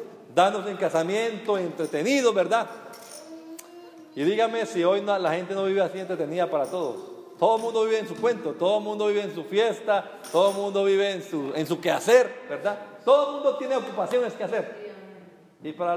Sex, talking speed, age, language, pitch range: male, 190 wpm, 50-69, Spanish, 160-225 Hz